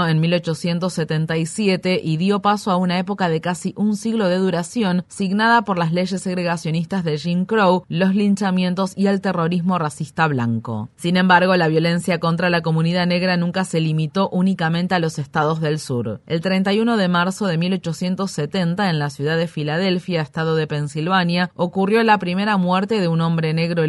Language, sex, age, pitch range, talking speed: Spanish, female, 30-49, 160-190 Hz, 170 wpm